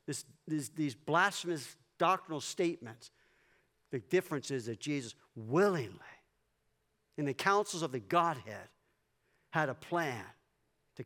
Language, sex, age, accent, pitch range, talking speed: English, male, 50-69, American, 130-185 Hz, 110 wpm